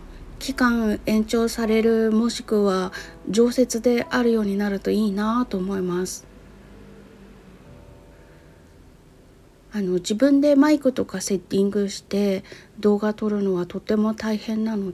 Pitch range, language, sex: 180-225 Hz, Japanese, female